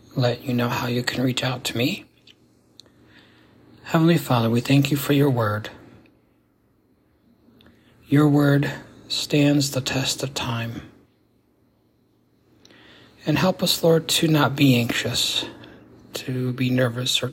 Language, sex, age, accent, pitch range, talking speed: English, male, 60-79, American, 120-150 Hz, 130 wpm